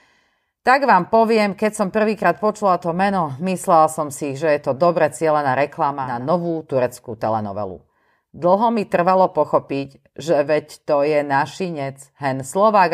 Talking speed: 155 wpm